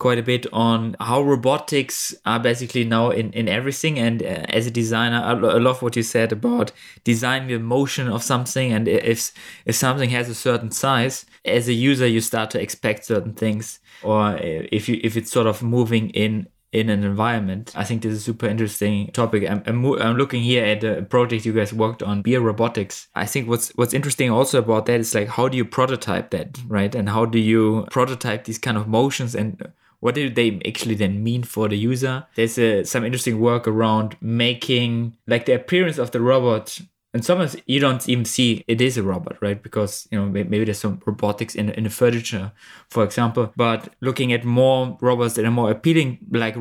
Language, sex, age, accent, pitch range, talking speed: English, male, 20-39, German, 110-125 Hz, 210 wpm